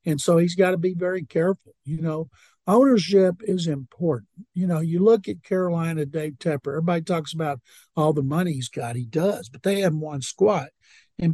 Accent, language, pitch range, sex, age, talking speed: American, English, 145-185 Hz, male, 60-79, 195 wpm